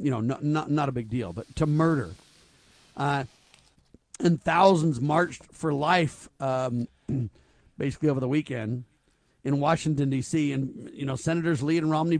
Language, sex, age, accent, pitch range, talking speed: English, male, 50-69, American, 130-160 Hz, 155 wpm